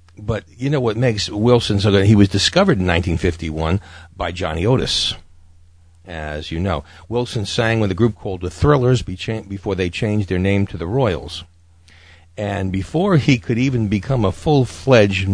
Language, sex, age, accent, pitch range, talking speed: English, male, 50-69, American, 85-110 Hz, 170 wpm